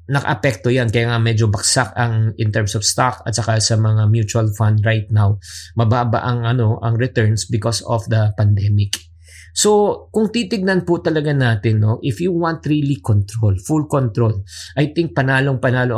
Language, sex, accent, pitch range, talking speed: English, male, Filipino, 105-135 Hz, 170 wpm